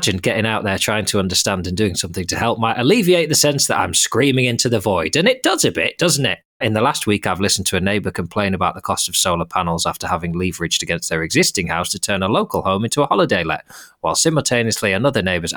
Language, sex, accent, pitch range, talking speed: English, male, British, 95-125 Hz, 250 wpm